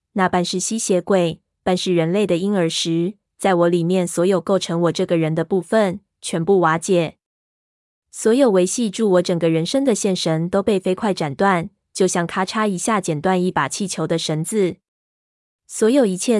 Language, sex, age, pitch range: Chinese, female, 20-39, 175-215 Hz